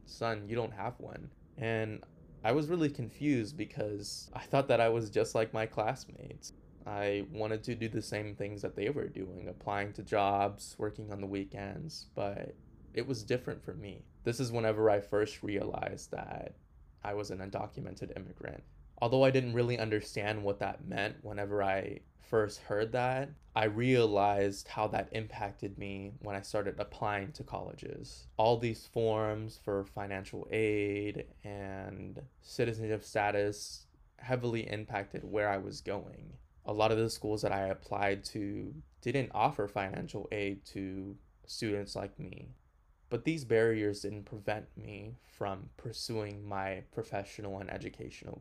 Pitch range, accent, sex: 100-115 Hz, American, male